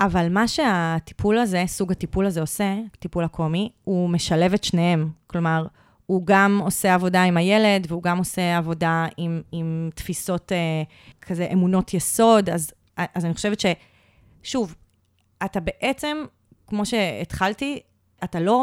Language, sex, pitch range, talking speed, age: Hebrew, female, 165-200 Hz, 140 wpm, 30-49